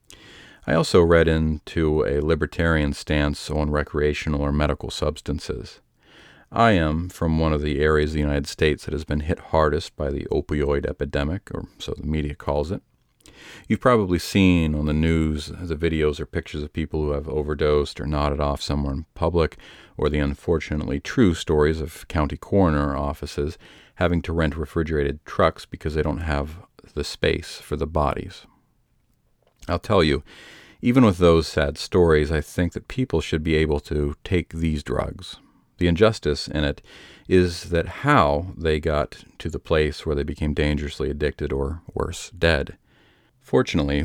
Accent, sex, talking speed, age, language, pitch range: American, male, 165 wpm, 40-59, English, 75-85 Hz